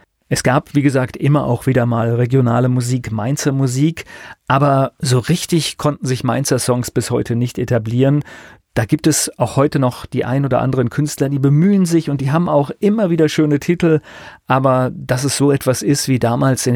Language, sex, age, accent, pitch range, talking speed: German, male, 40-59, German, 120-145 Hz, 195 wpm